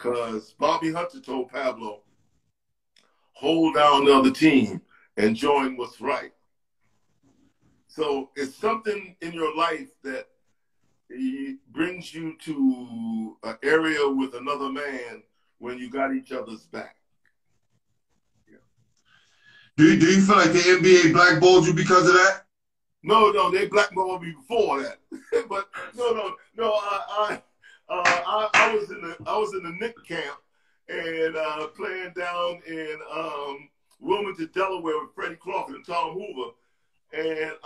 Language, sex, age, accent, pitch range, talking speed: English, male, 50-69, American, 145-195 Hz, 145 wpm